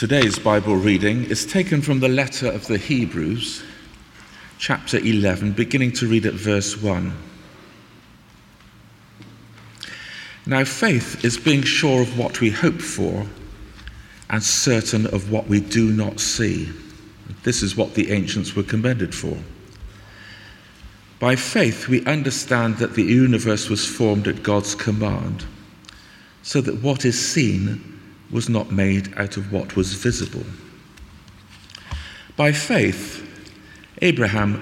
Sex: male